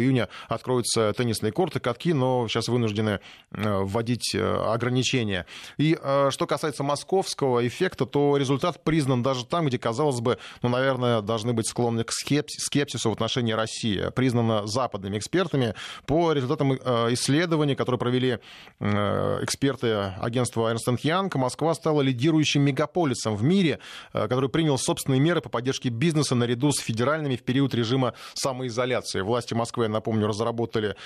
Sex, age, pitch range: male, 20-39, 115-145 Hz